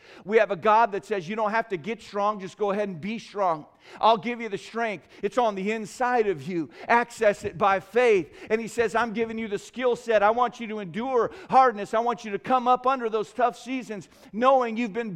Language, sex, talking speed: English, male, 240 wpm